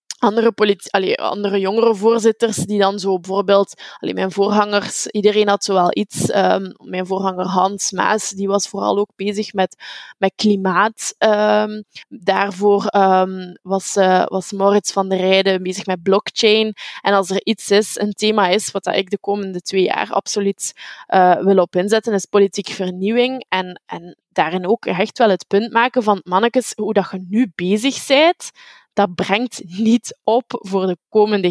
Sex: female